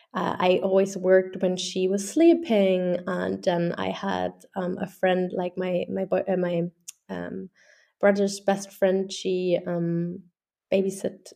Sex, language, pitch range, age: female, English, 180-200 Hz, 20-39